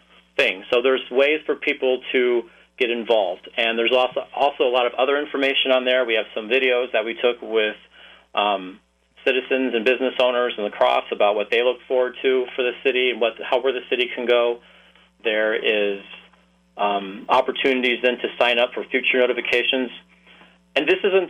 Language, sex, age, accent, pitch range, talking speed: English, male, 40-59, American, 110-130 Hz, 185 wpm